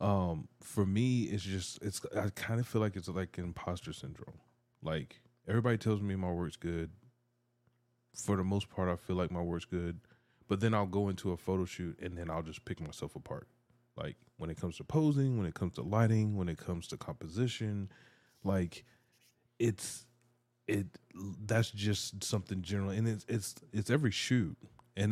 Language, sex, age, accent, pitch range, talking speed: English, male, 20-39, American, 90-115 Hz, 185 wpm